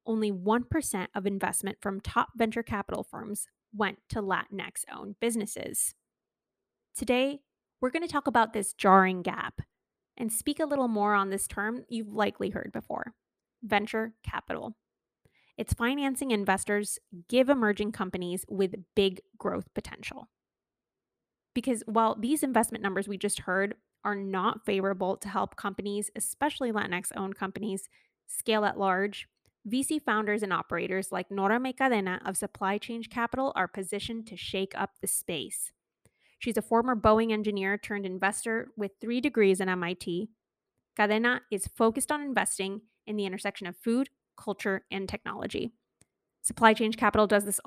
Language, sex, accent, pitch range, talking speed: English, female, American, 195-230 Hz, 145 wpm